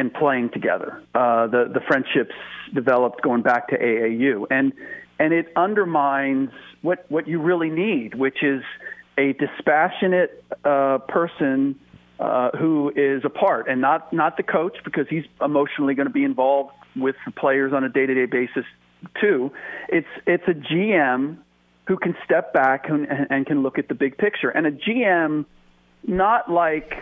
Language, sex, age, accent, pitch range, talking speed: English, male, 40-59, American, 135-165 Hz, 165 wpm